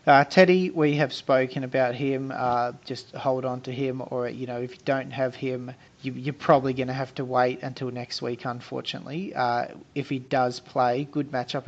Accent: Australian